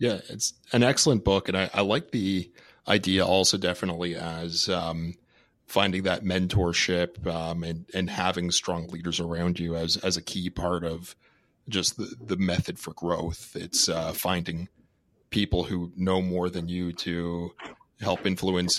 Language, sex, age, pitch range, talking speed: English, male, 30-49, 85-95 Hz, 160 wpm